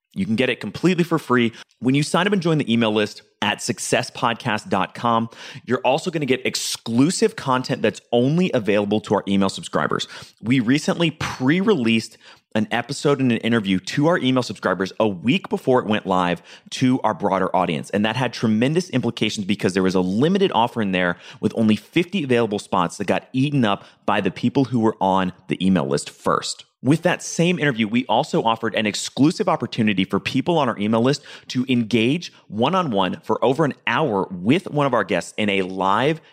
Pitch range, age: 105-140 Hz, 30-49